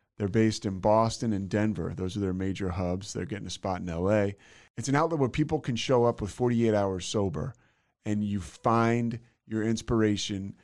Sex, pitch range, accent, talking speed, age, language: male, 95-120 Hz, American, 190 wpm, 30-49, English